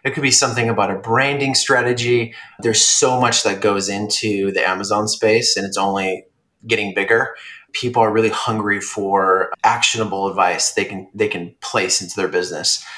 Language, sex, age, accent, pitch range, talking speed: English, male, 30-49, American, 100-120 Hz, 170 wpm